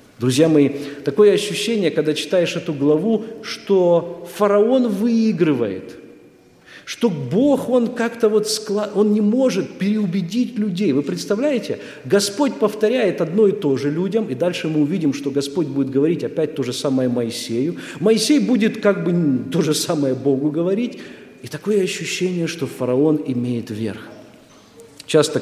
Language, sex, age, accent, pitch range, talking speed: Russian, male, 50-69, native, 135-210 Hz, 145 wpm